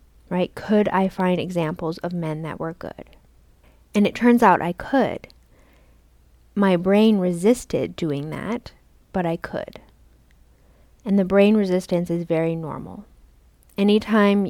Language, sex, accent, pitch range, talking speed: English, female, American, 155-195 Hz, 130 wpm